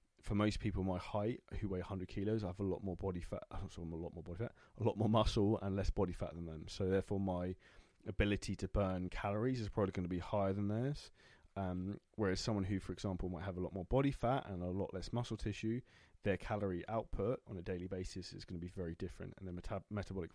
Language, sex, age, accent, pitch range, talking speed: English, male, 20-39, British, 90-105 Hz, 245 wpm